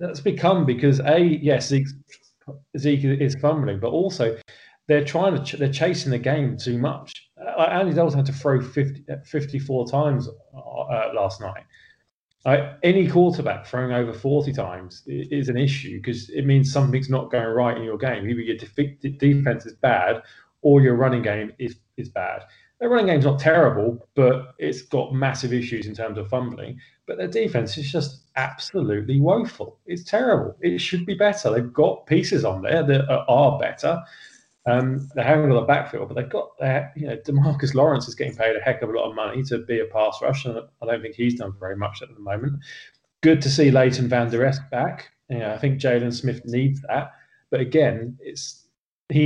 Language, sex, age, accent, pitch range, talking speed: English, male, 20-39, British, 120-145 Hz, 200 wpm